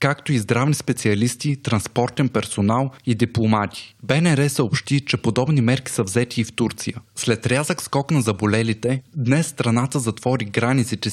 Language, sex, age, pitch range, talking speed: Bulgarian, male, 20-39, 115-135 Hz, 145 wpm